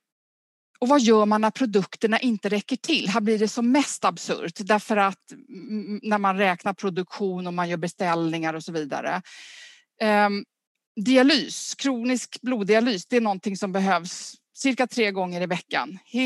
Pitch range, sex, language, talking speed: 195-260 Hz, female, Swedish, 150 wpm